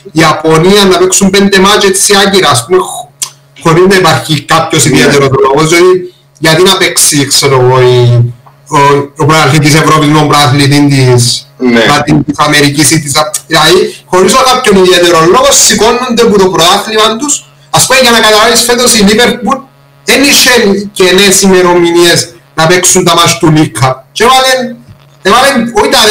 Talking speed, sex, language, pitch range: 120 wpm, male, Greek, 155-230 Hz